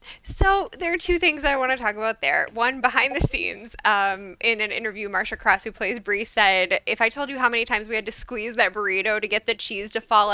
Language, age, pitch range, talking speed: English, 10-29, 200-255 Hz, 260 wpm